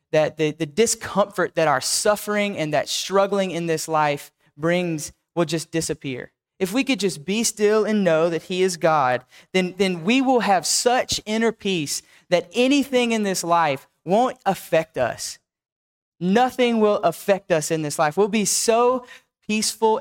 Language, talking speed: English, 170 wpm